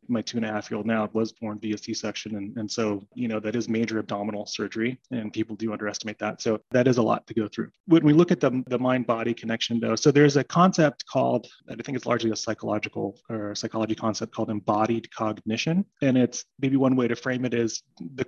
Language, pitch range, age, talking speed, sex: English, 110-135 Hz, 30-49, 235 wpm, male